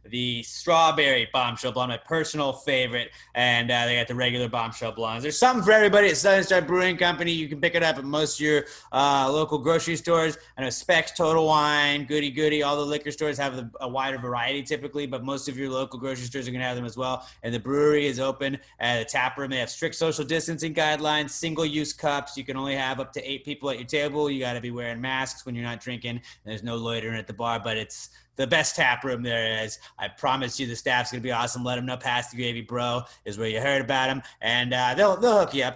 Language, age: English, 30-49